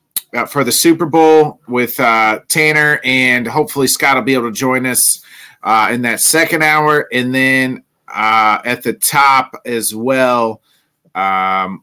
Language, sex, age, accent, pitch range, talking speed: English, male, 30-49, American, 105-150 Hz, 155 wpm